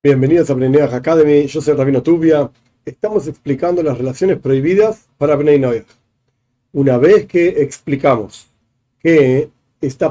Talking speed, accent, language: 125 wpm, Argentinian, Spanish